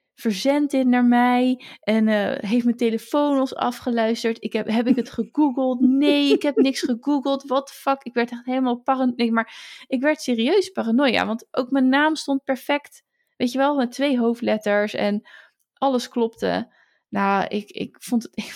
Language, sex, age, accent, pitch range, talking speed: Dutch, female, 20-39, Dutch, 215-270 Hz, 180 wpm